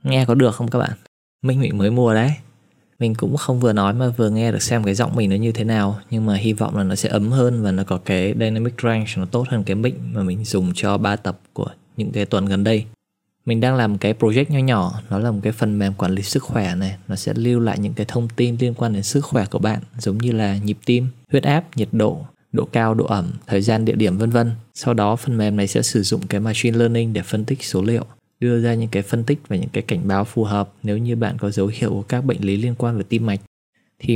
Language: Vietnamese